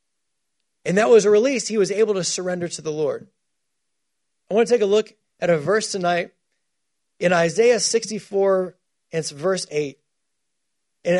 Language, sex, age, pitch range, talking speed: English, male, 30-49, 165-210 Hz, 160 wpm